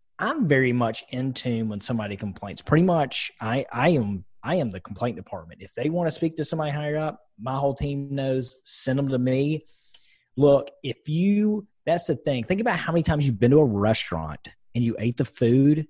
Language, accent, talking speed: English, American, 210 wpm